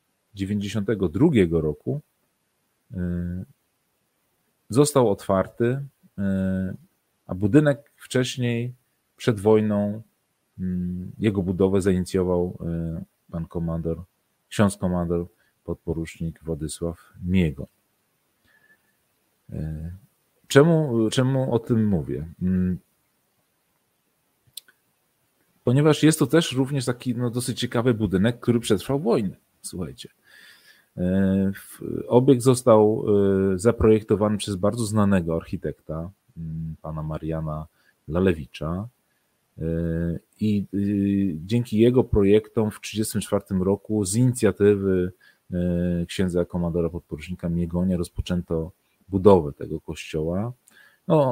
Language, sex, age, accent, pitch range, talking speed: Polish, male, 40-59, native, 90-120 Hz, 75 wpm